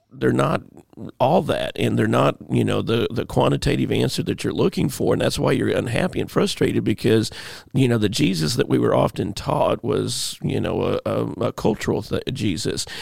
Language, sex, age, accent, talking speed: English, male, 40-59, American, 190 wpm